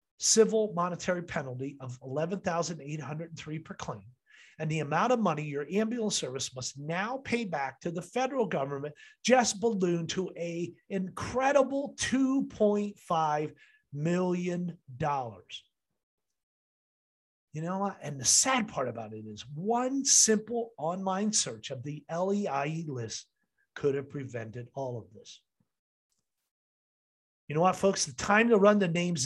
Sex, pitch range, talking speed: male, 145-210 Hz, 130 wpm